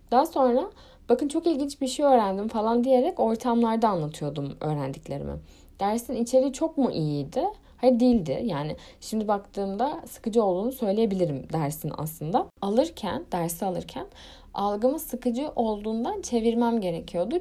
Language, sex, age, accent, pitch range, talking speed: Turkish, female, 10-29, native, 175-255 Hz, 125 wpm